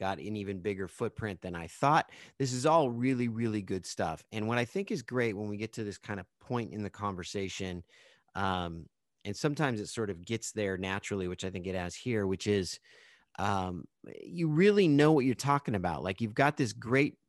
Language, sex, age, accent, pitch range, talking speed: English, male, 30-49, American, 100-125 Hz, 215 wpm